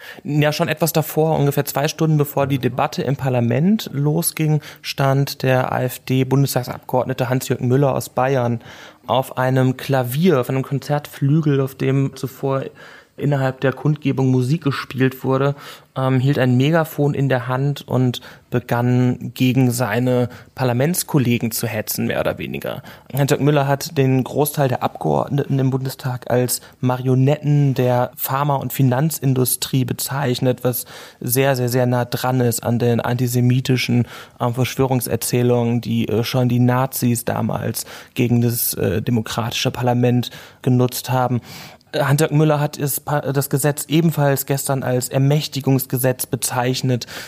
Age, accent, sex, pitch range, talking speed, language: 30-49, German, male, 125-140 Hz, 130 wpm, German